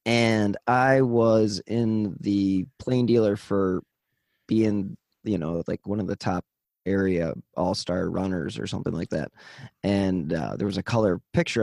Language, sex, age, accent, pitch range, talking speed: English, male, 20-39, American, 95-120 Hz, 155 wpm